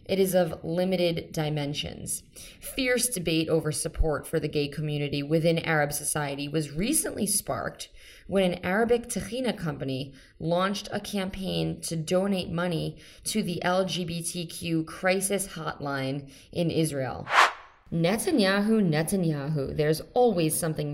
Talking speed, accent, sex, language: 120 wpm, American, female, English